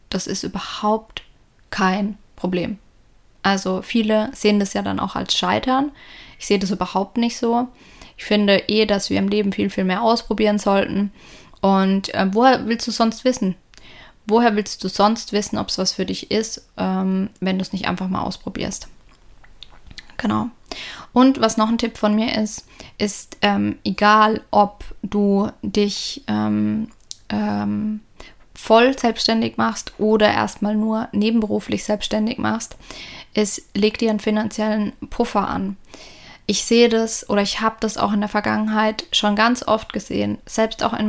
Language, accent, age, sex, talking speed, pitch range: German, German, 10-29, female, 160 wpm, 195-220 Hz